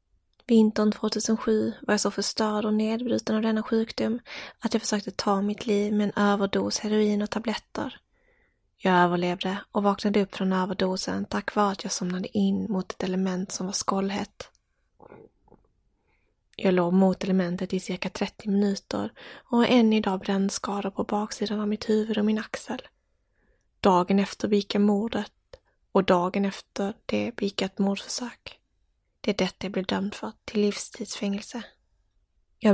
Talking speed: 155 wpm